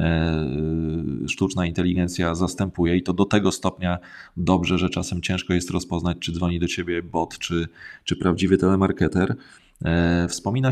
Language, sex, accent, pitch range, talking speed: Polish, male, native, 85-105 Hz, 135 wpm